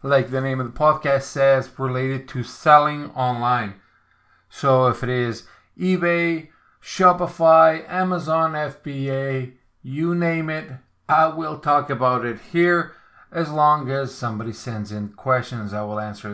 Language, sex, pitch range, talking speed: English, male, 115-150 Hz, 140 wpm